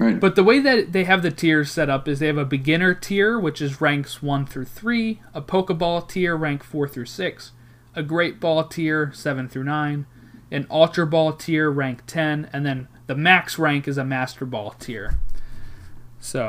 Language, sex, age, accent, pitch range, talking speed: English, male, 30-49, American, 125-165 Hz, 195 wpm